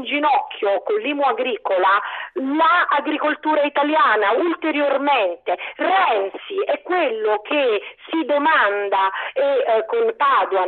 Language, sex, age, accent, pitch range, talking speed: Italian, female, 40-59, native, 245-360 Hz, 100 wpm